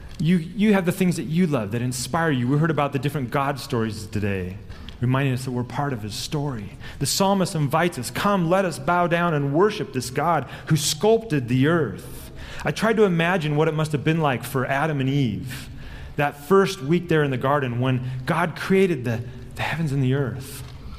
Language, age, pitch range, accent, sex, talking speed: English, 30-49, 125-170 Hz, American, male, 210 wpm